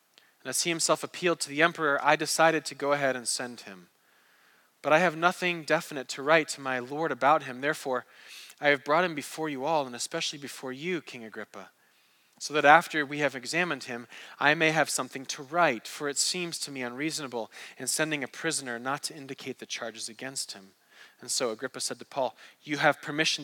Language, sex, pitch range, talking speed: English, male, 130-160 Hz, 205 wpm